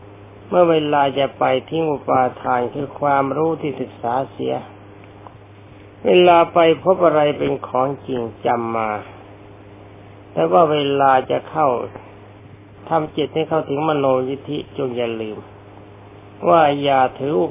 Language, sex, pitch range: Thai, male, 100-145 Hz